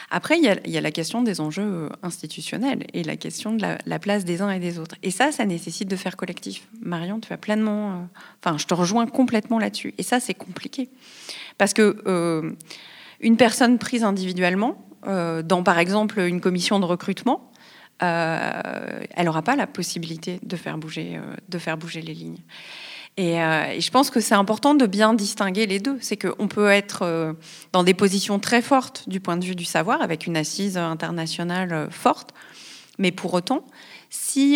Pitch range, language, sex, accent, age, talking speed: 175-220 Hz, French, female, French, 30-49, 180 wpm